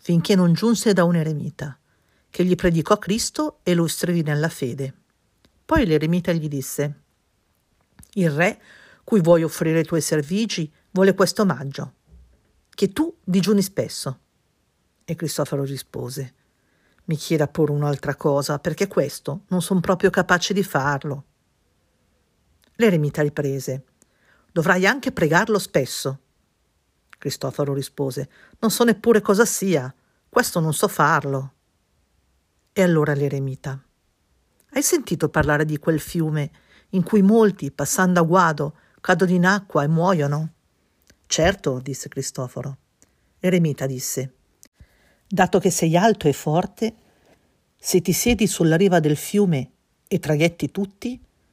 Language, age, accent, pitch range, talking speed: Italian, 50-69, native, 145-190 Hz, 125 wpm